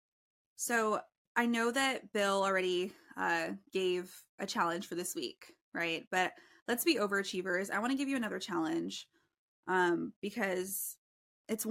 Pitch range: 185-230 Hz